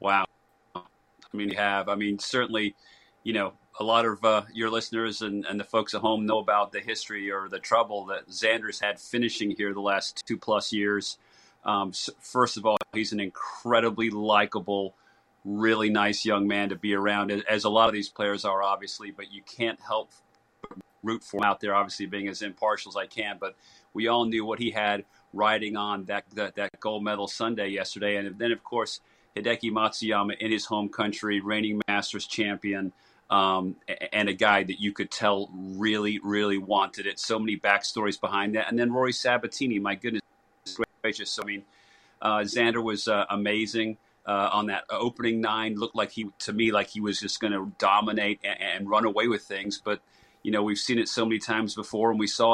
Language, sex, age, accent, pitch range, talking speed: English, male, 40-59, American, 100-110 Hz, 200 wpm